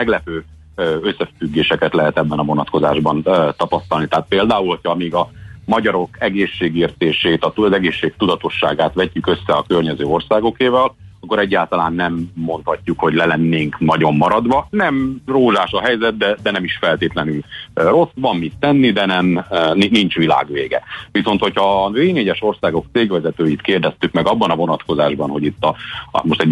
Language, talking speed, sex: Hungarian, 145 wpm, male